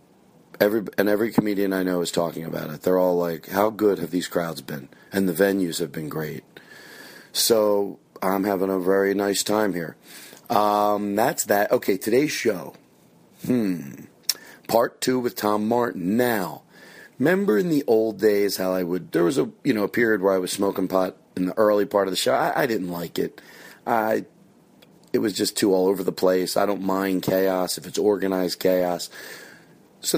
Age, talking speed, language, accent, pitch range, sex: 40-59, 190 wpm, English, American, 90-110 Hz, male